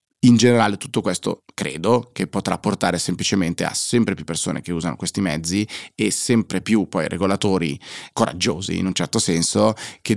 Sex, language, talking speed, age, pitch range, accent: male, Italian, 165 wpm, 30-49, 90-105 Hz, native